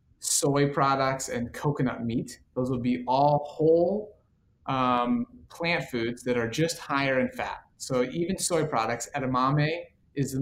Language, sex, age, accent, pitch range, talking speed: English, male, 30-49, American, 120-145 Hz, 150 wpm